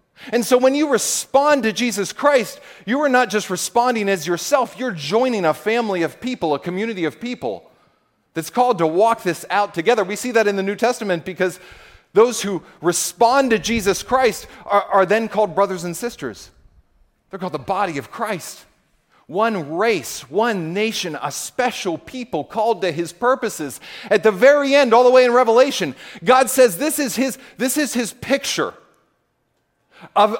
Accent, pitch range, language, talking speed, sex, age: American, 180-250 Hz, English, 175 wpm, male, 40-59